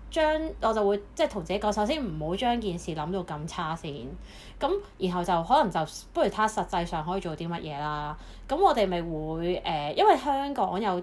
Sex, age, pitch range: female, 30-49, 165-220 Hz